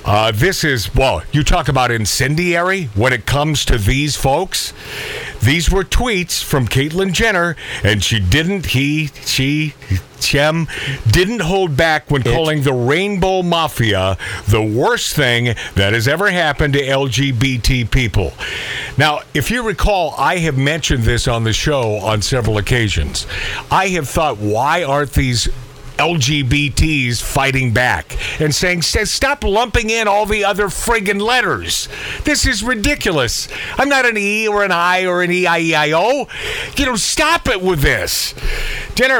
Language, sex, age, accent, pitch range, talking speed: English, male, 50-69, American, 120-170 Hz, 150 wpm